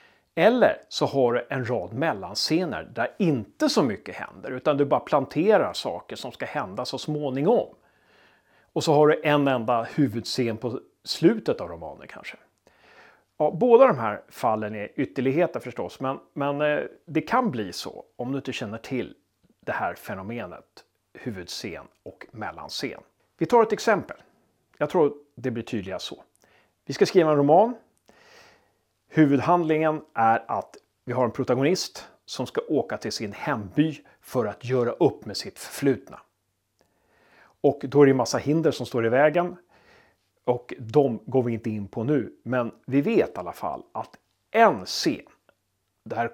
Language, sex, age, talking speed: Swedish, male, 30-49, 160 wpm